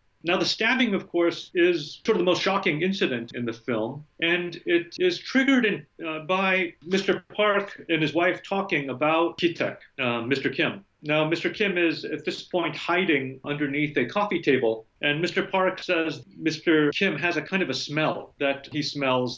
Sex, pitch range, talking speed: male, 135-180 Hz, 185 wpm